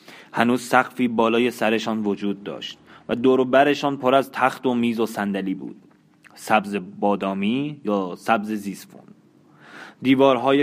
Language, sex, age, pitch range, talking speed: Persian, male, 20-39, 105-130 Hz, 135 wpm